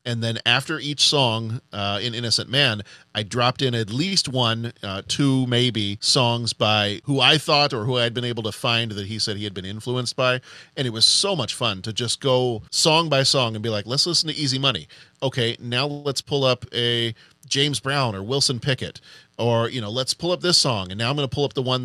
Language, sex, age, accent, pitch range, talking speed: English, male, 40-59, American, 110-135 Hz, 235 wpm